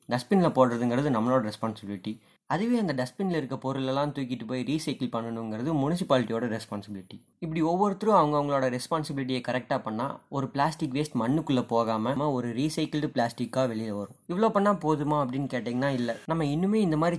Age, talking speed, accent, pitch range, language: 20-39, 145 wpm, native, 115-155 Hz, Tamil